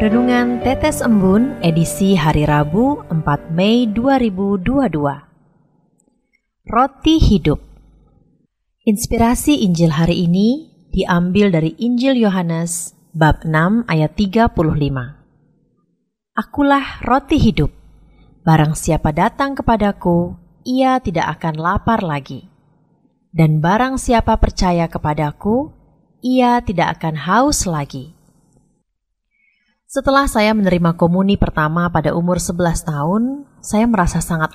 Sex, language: female, Indonesian